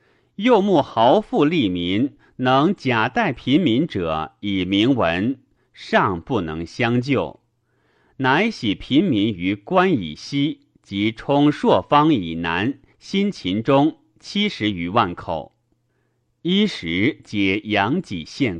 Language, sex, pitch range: Chinese, male, 100-140 Hz